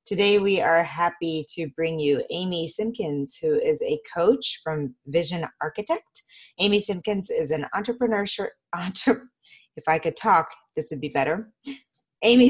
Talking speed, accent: 155 wpm, American